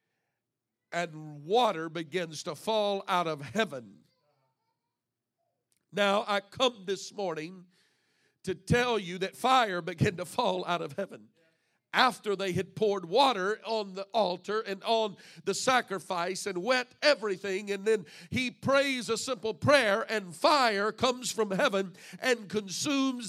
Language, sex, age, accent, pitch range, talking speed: English, male, 50-69, American, 170-225 Hz, 135 wpm